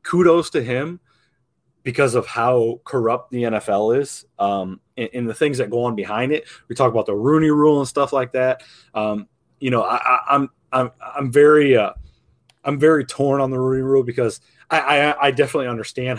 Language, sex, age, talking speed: English, male, 20-39, 195 wpm